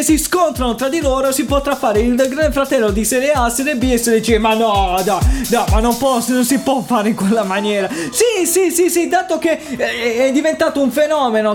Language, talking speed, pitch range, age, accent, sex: English, 230 wpm, 225-280 Hz, 20-39, Italian, male